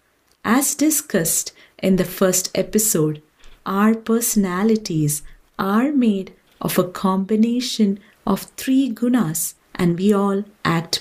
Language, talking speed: English, 110 wpm